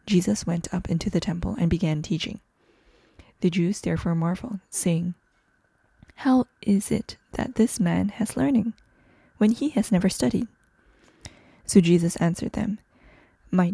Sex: female